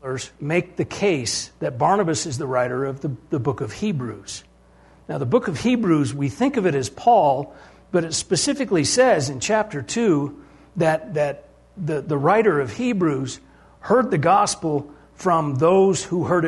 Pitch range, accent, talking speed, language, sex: 125-180 Hz, American, 170 wpm, English, male